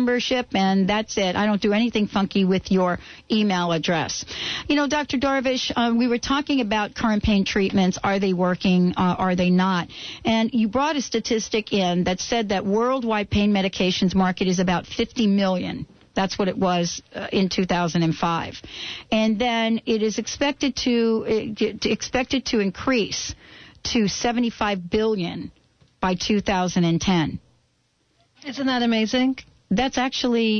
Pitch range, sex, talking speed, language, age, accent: 190-235 Hz, female, 165 wpm, English, 50-69, American